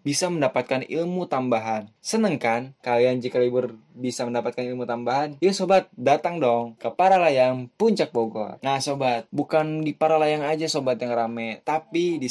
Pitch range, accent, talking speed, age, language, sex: 115-150 Hz, native, 155 wpm, 10-29, Indonesian, male